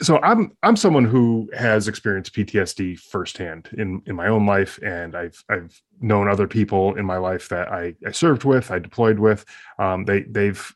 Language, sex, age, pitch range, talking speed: English, male, 20-39, 95-115 Hz, 190 wpm